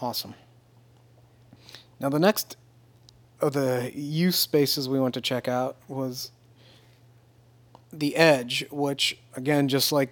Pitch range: 120-140 Hz